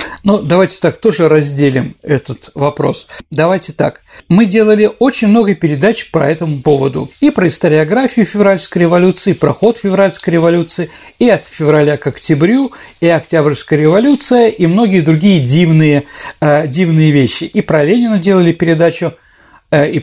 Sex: male